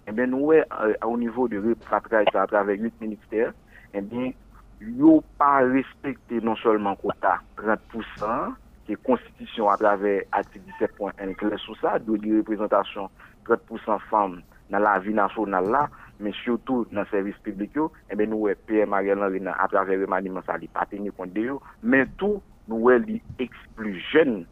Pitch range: 105-140 Hz